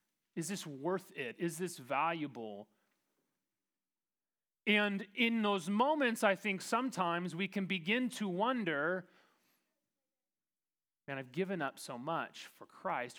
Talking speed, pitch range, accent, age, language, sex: 125 wpm, 150-200 Hz, American, 30-49, English, male